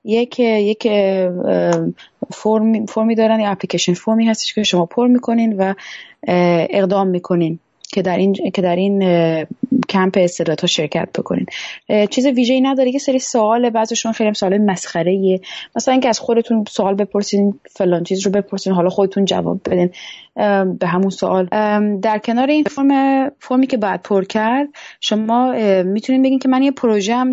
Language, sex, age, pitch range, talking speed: Persian, female, 20-39, 185-230 Hz, 150 wpm